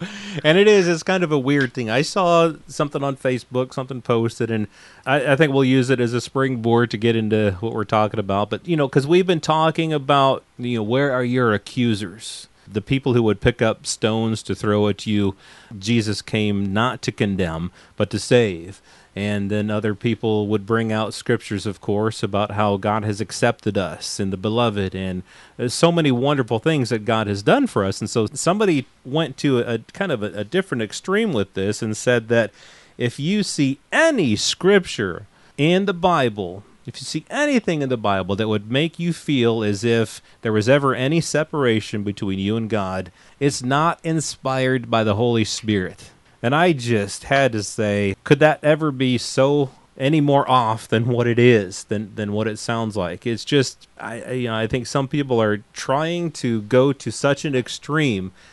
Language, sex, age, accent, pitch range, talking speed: English, male, 30-49, American, 105-140 Hz, 195 wpm